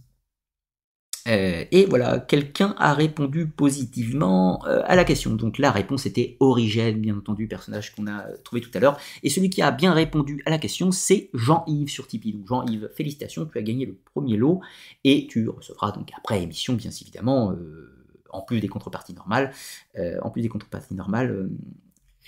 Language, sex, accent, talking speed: French, male, French, 175 wpm